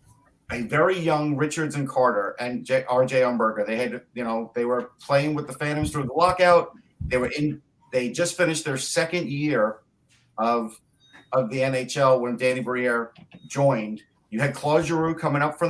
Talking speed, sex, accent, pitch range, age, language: 180 wpm, male, American, 125-160 Hz, 50-69, English